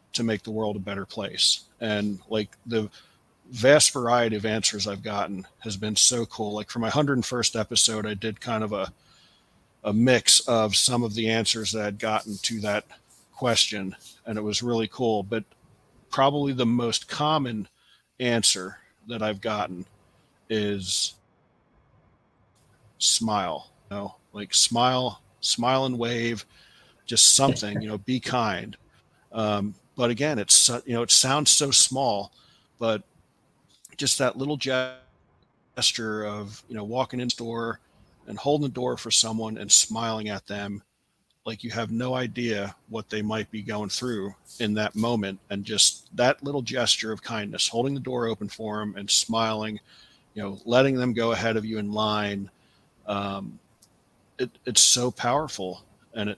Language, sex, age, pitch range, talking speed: English, male, 40-59, 105-120 Hz, 160 wpm